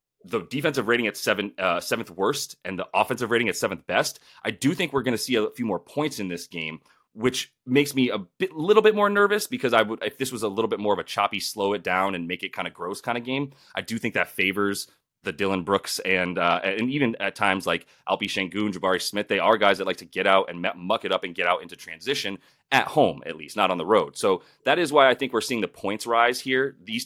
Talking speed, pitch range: 265 wpm, 95-130 Hz